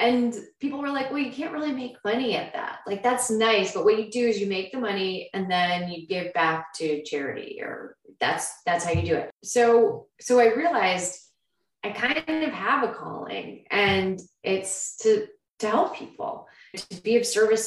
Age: 20-39